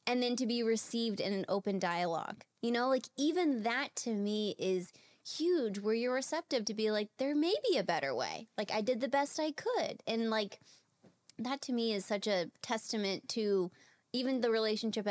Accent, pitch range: American, 195-245 Hz